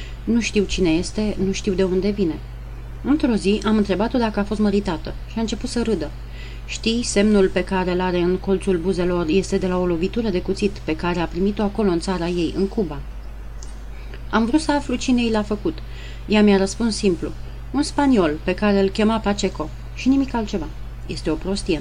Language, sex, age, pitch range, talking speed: Romanian, female, 30-49, 175-215 Hz, 200 wpm